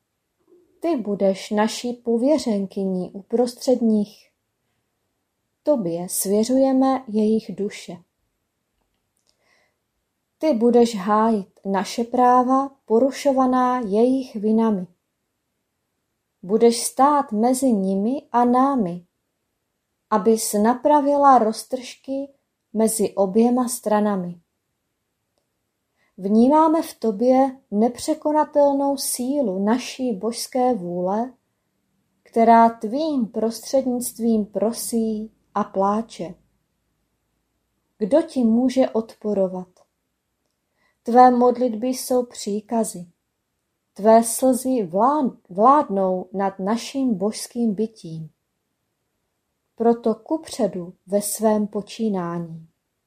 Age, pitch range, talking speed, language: 30-49, 205-255 Hz, 75 wpm, Czech